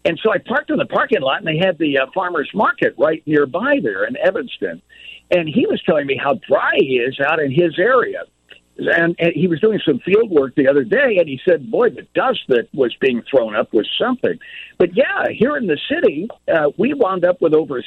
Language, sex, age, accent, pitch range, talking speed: English, male, 60-79, American, 140-205 Hz, 230 wpm